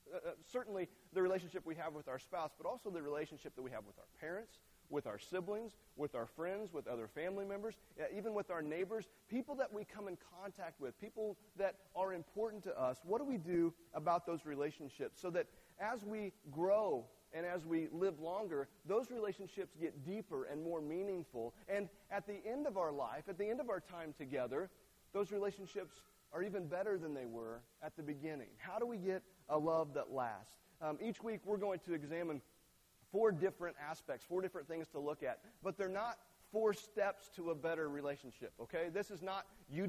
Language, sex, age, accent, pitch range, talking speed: English, male, 30-49, American, 155-205 Hz, 200 wpm